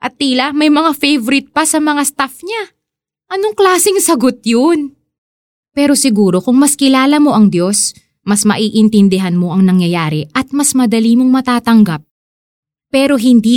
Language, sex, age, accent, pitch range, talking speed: Filipino, female, 20-39, native, 190-275 Hz, 150 wpm